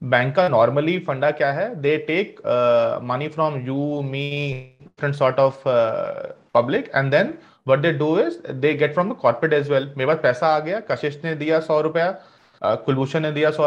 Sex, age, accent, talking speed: male, 30-49, Indian, 165 wpm